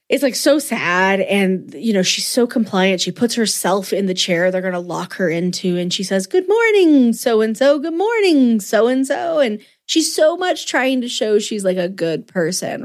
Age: 30-49